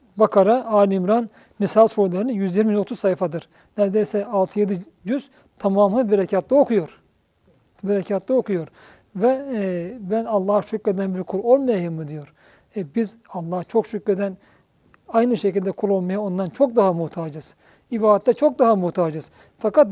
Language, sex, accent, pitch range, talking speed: Turkish, male, native, 190-235 Hz, 125 wpm